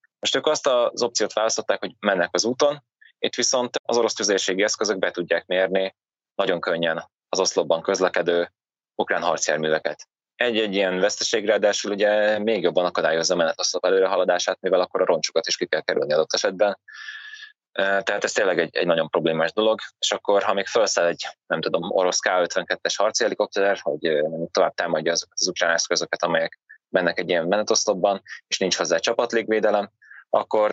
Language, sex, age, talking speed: Hungarian, male, 20-39, 160 wpm